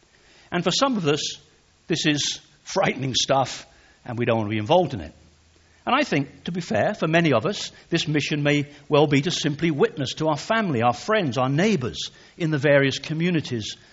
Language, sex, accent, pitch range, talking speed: English, male, British, 130-185 Hz, 205 wpm